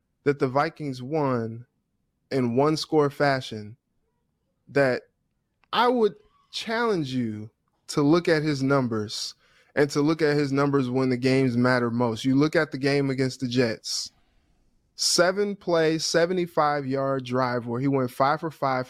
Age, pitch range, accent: 20-39, 125-150 Hz, American